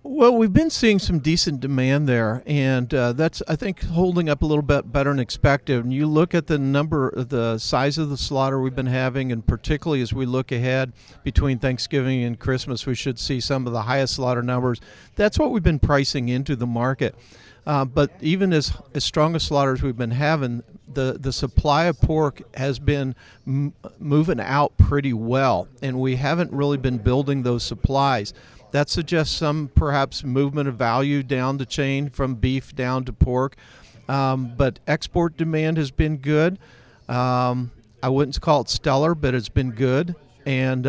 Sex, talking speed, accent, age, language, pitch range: male, 185 wpm, American, 50-69, English, 125-150 Hz